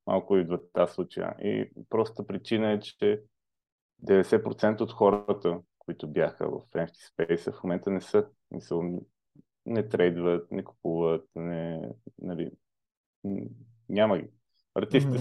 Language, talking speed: Bulgarian, 125 wpm